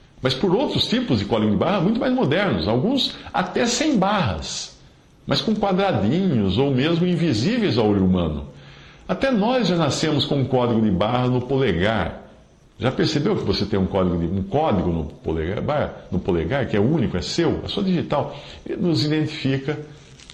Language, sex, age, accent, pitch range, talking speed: Portuguese, male, 50-69, Brazilian, 95-145 Hz, 170 wpm